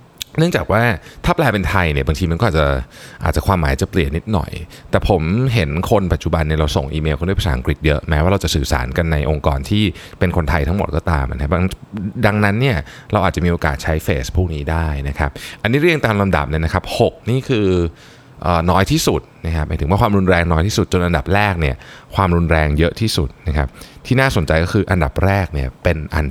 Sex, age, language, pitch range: male, 20-39, Thai, 75-105 Hz